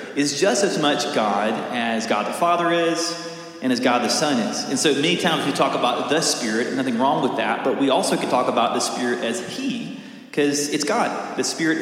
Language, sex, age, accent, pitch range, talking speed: English, male, 30-49, American, 135-205 Hz, 225 wpm